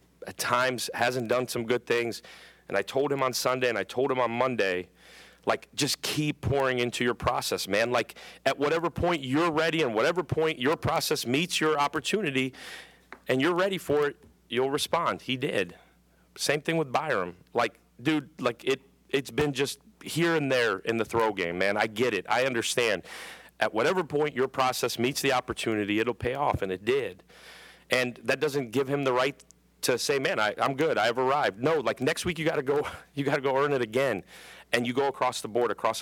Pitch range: 110-145 Hz